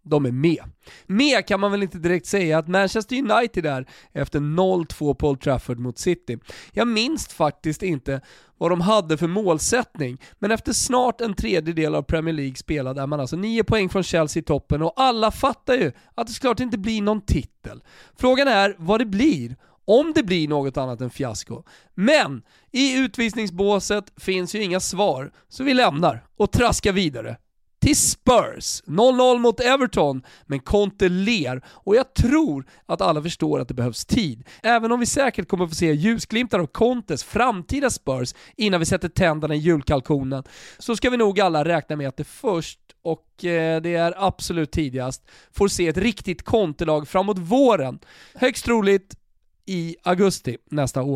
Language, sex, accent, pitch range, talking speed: Swedish, male, native, 150-225 Hz, 170 wpm